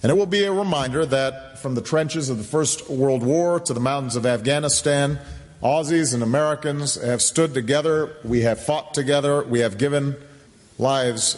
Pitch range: 110-140 Hz